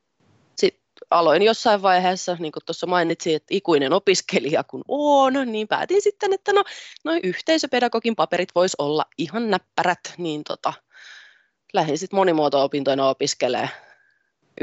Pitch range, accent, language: 145-205 Hz, native, Finnish